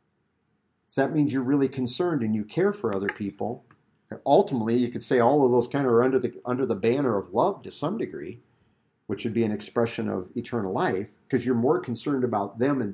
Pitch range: 110-135 Hz